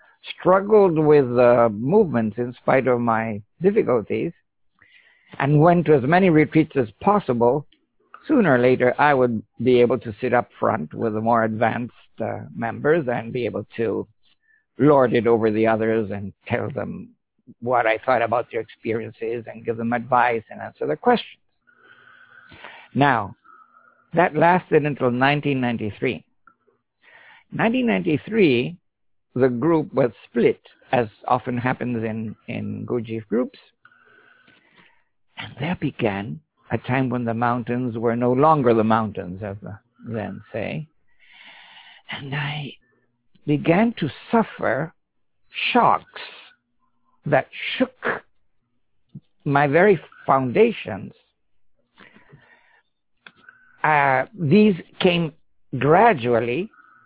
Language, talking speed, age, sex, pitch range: English, 115 wpm, 60-79, male, 120-180 Hz